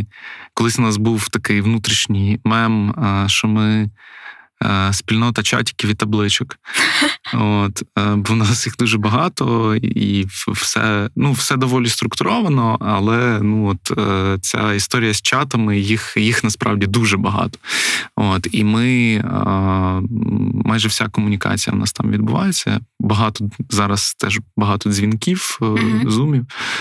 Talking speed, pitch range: 120 wpm, 105-120 Hz